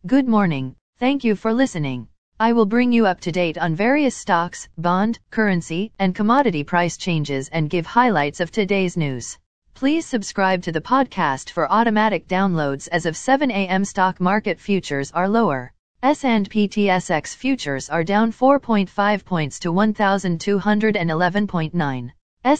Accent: American